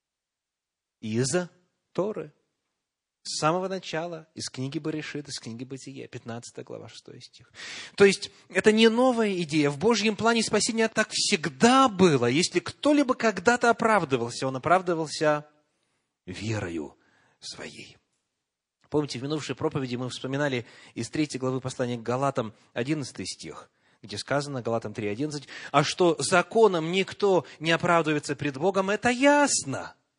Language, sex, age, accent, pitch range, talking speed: Russian, male, 30-49, native, 125-185 Hz, 125 wpm